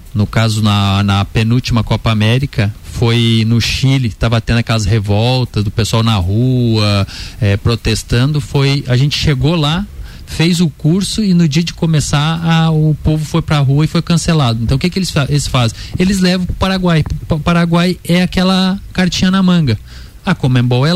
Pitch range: 120-165 Hz